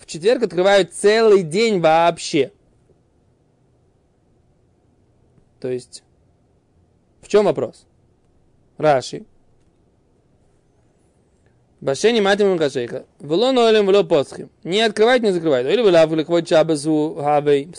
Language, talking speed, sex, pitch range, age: Russian, 85 wpm, male, 150-205 Hz, 20-39